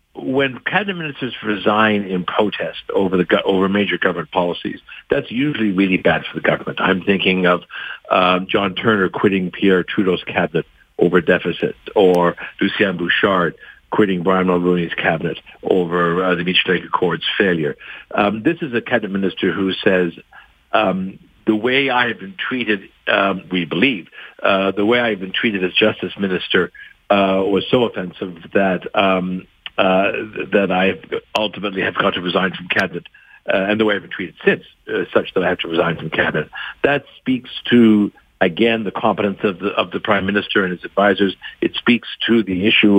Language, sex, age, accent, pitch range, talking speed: English, male, 60-79, American, 95-110 Hz, 175 wpm